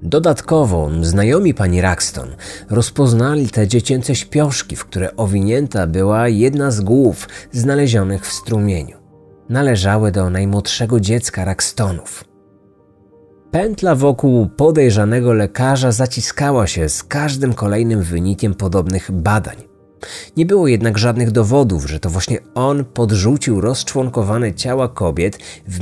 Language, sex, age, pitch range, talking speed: Polish, male, 30-49, 90-125 Hz, 115 wpm